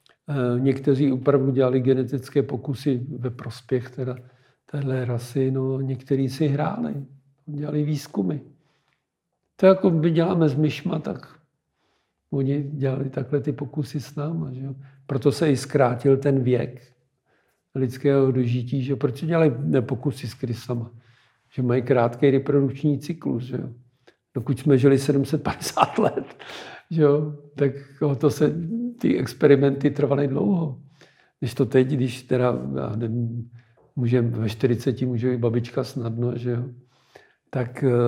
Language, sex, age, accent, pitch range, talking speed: Czech, male, 50-69, native, 125-145 Hz, 125 wpm